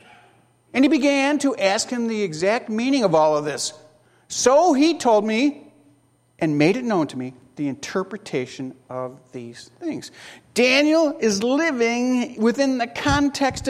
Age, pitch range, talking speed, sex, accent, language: 50-69, 165-250 Hz, 150 wpm, male, American, English